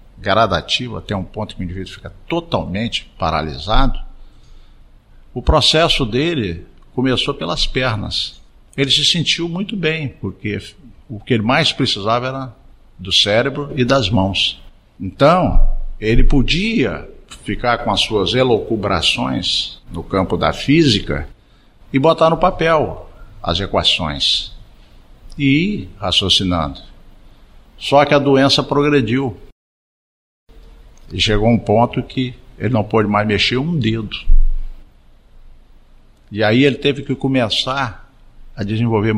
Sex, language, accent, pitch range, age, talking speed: male, Portuguese, Brazilian, 95-135 Hz, 50-69, 120 wpm